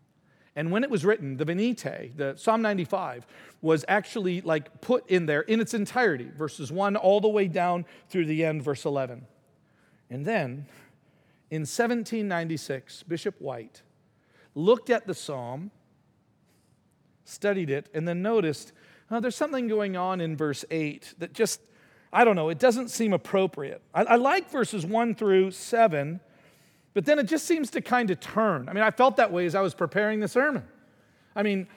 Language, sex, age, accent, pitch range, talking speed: English, male, 40-59, American, 155-220 Hz, 175 wpm